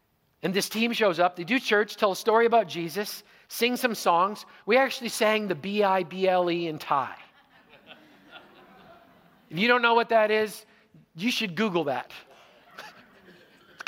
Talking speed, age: 150 wpm, 50-69